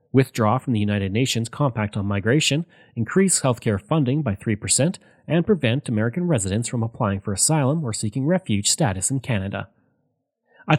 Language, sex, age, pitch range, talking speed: English, male, 30-49, 110-150 Hz, 155 wpm